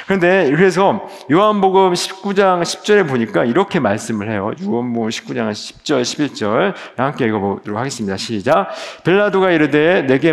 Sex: male